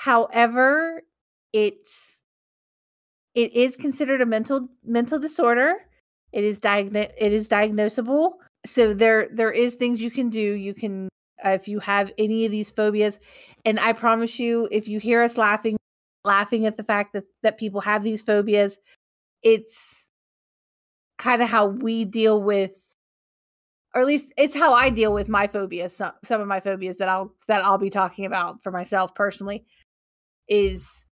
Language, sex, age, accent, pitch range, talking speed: English, female, 30-49, American, 200-230 Hz, 160 wpm